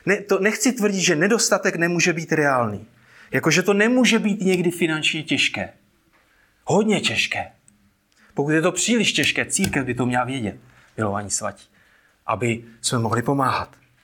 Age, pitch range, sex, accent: 30-49, 130-185 Hz, male, native